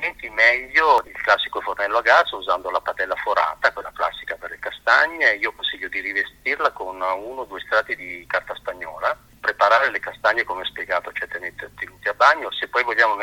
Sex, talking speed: male, 185 wpm